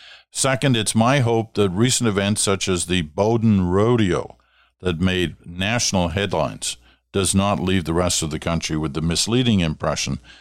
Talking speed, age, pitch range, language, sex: 160 wpm, 50-69, 85-110 Hz, English, male